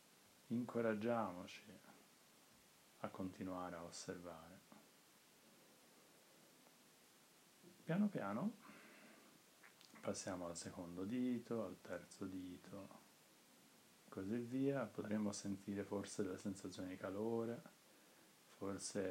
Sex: male